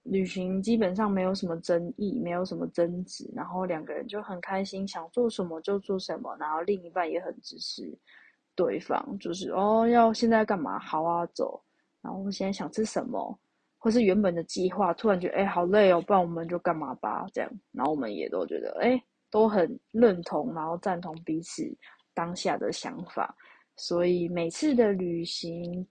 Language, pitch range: Chinese, 175-245 Hz